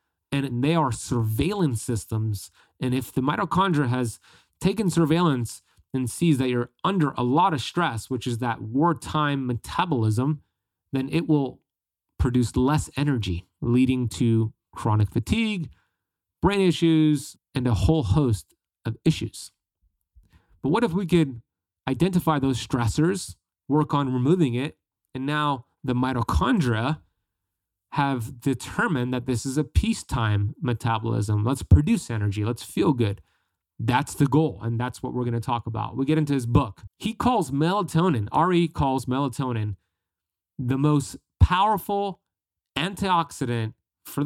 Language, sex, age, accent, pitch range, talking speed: English, male, 30-49, American, 110-155 Hz, 140 wpm